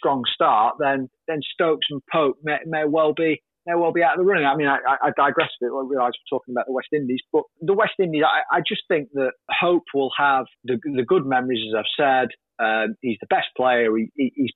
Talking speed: 250 wpm